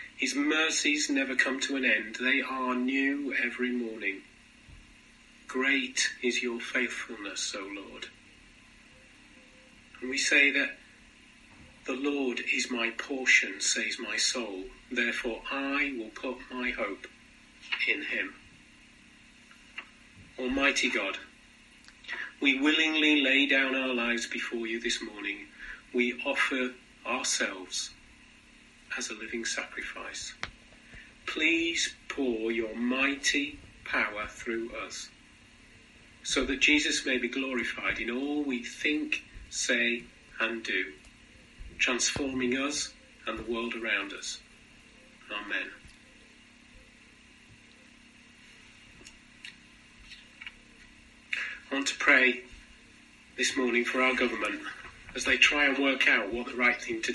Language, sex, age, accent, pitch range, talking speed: English, male, 40-59, British, 120-145 Hz, 110 wpm